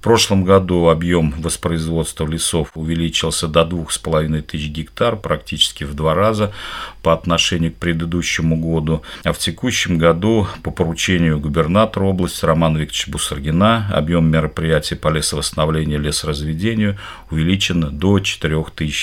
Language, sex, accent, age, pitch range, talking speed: Russian, male, native, 50-69, 80-90 Hz, 125 wpm